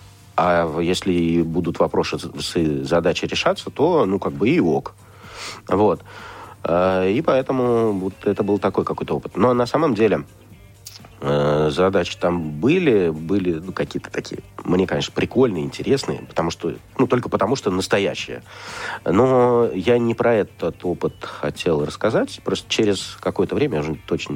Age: 40-59